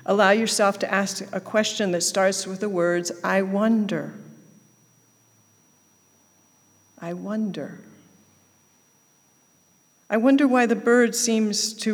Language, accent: English, American